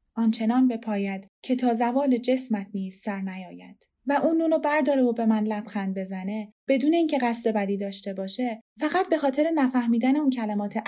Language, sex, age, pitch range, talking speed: Persian, female, 20-39, 205-255 Hz, 175 wpm